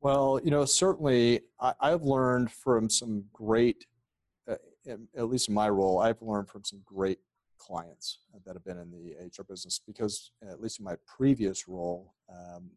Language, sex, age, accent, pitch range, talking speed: English, male, 50-69, American, 90-110 Hz, 165 wpm